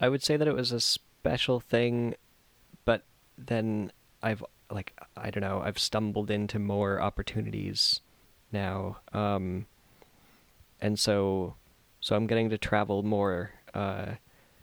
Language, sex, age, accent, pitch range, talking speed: English, male, 20-39, American, 95-110 Hz, 130 wpm